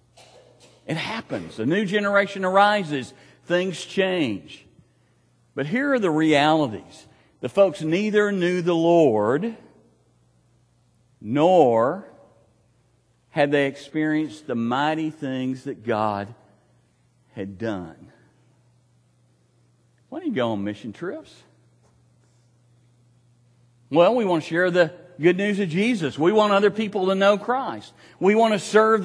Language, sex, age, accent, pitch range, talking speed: English, male, 50-69, American, 115-175 Hz, 120 wpm